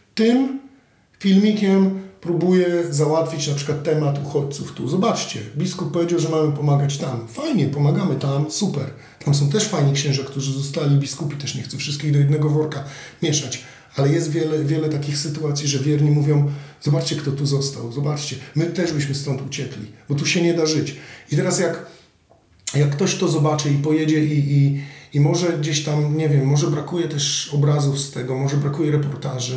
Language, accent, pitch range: Polish, native, 140-155 Hz